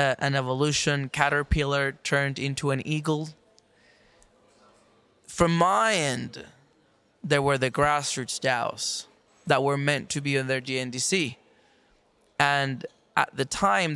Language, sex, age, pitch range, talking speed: English, male, 20-39, 135-155 Hz, 115 wpm